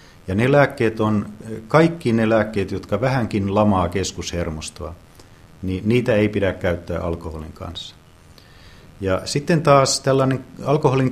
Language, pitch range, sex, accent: Finnish, 90-110 Hz, male, native